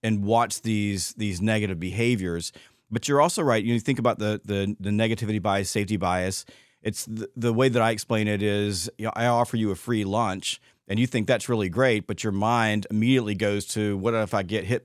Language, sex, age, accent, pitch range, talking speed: English, male, 40-59, American, 105-125 Hz, 225 wpm